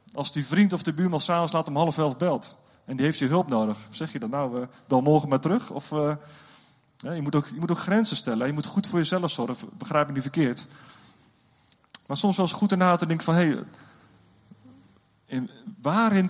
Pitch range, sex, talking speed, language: 135-180 Hz, male, 210 wpm, Dutch